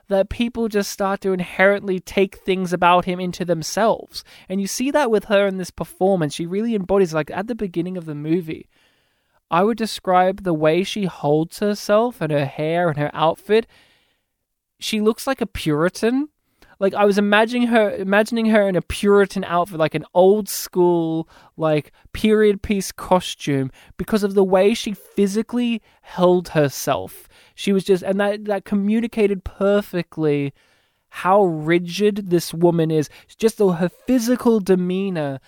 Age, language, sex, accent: 20-39, English, male, Australian